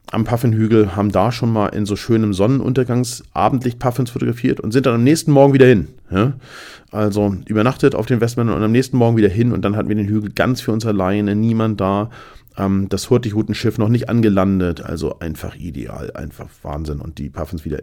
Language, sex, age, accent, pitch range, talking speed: German, male, 40-59, German, 100-120 Hz, 190 wpm